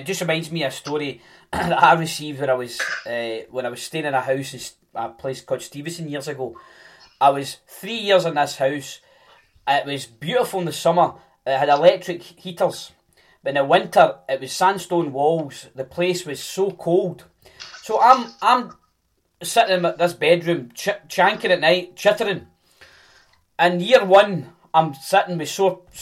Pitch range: 155-190 Hz